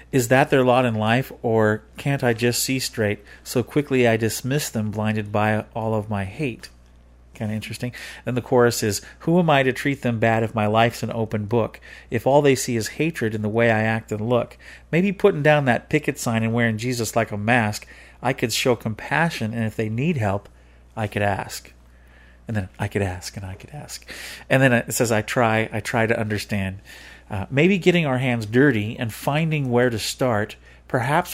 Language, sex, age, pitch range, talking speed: English, male, 40-59, 105-130 Hz, 210 wpm